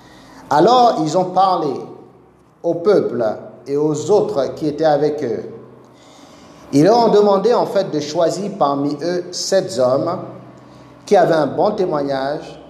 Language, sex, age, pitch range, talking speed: French, male, 50-69, 140-185 Hz, 140 wpm